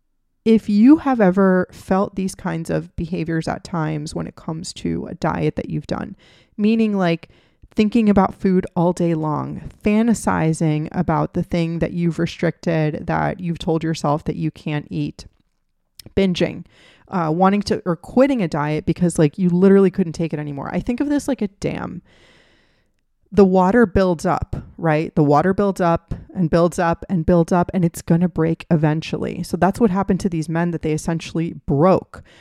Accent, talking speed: American, 180 wpm